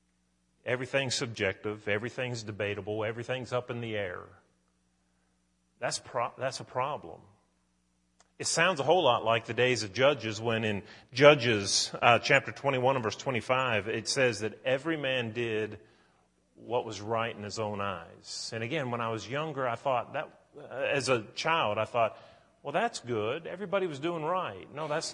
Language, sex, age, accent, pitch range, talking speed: English, male, 40-59, American, 100-135 Hz, 165 wpm